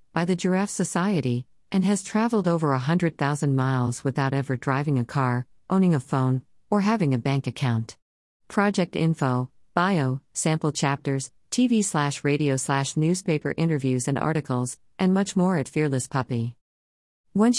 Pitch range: 130-165 Hz